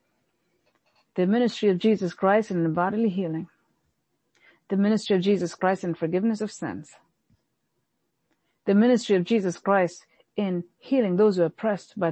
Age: 40-59